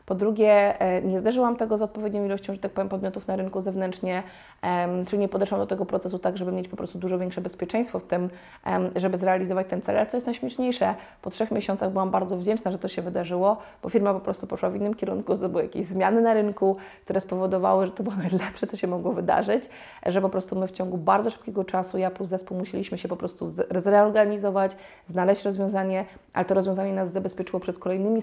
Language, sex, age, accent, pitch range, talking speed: Polish, female, 20-39, native, 185-205 Hz, 210 wpm